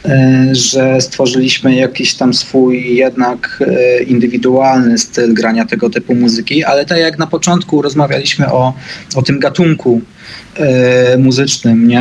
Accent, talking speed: native, 115 wpm